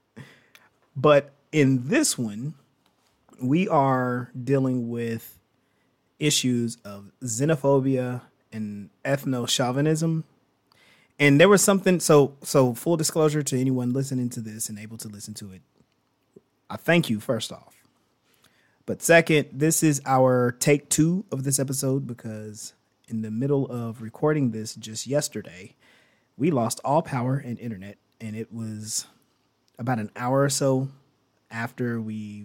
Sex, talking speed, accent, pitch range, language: male, 135 wpm, American, 115-140 Hz, English